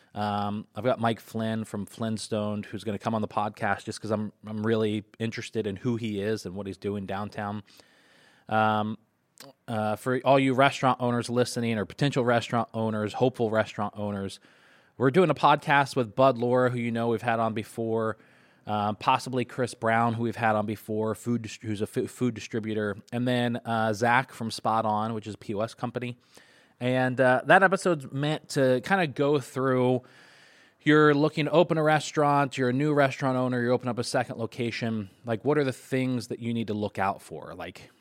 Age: 20-39